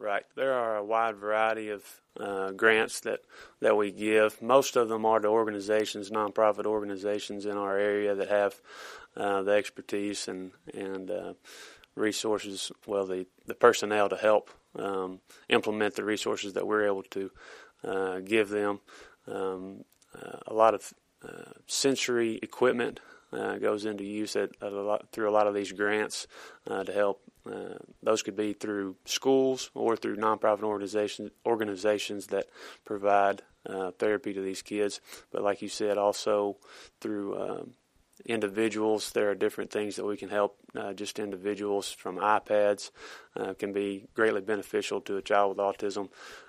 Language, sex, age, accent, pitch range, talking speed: English, male, 20-39, American, 100-110 Hz, 160 wpm